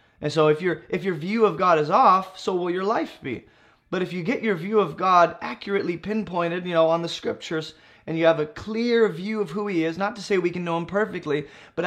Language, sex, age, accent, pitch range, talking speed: English, male, 20-39, American, 160-215 Hz, 255 wpm